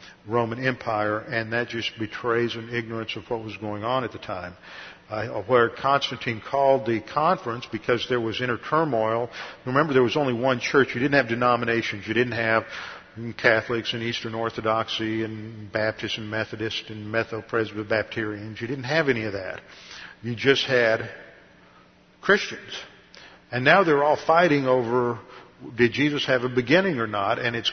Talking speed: 165 wpm